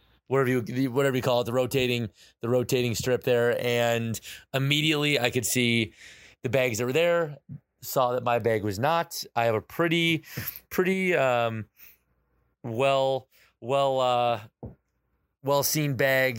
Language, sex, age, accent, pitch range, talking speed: English, male, 30-49, American, 115-135 Hz, 145 wpm